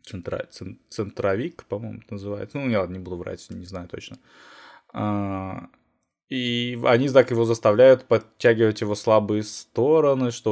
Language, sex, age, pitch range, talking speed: Russian, male, 20-39, 100-120 Hz, 125 wpm